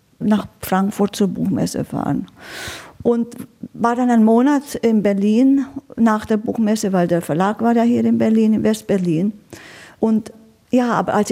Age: 50-69